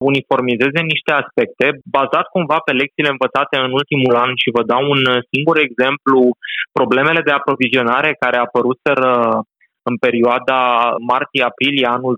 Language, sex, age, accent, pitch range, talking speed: Romanian, male, 20-39, native, 125-140 Hz, 135 wpm